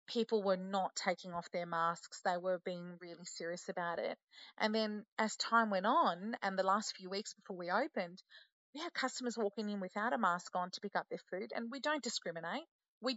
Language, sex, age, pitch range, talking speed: English, female, 30-49, 180-235 Hz, 215 wpm